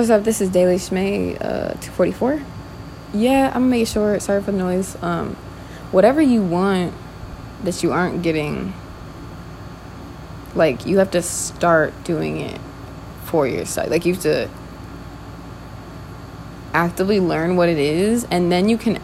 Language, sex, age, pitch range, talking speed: English, female, 20-39, 160-195 Hz, 150 wpm